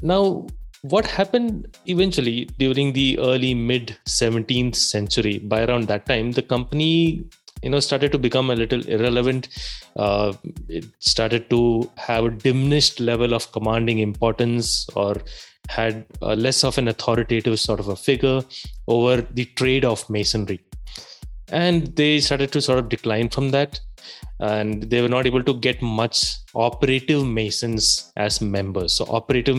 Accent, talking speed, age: Indian, 150 wpm, 20-39